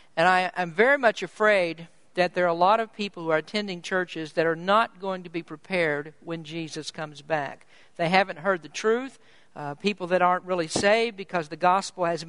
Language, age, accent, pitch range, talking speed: English, 50-69, American, 170-210 Hz, 205 wpm